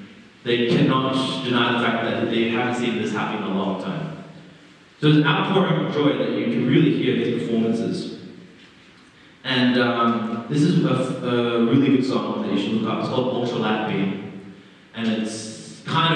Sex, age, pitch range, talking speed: male, 30-49, 100-125 Hz, 180 wpm